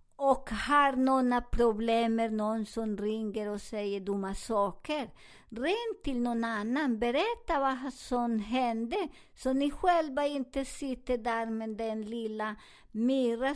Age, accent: 50-69, American